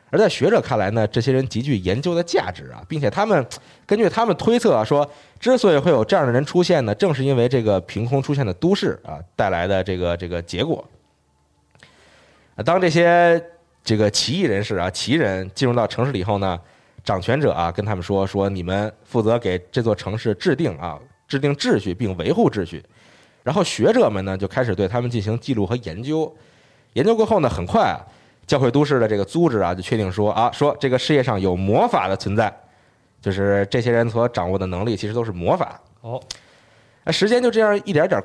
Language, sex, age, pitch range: Chinese, male, 20-39, 95-145 Hz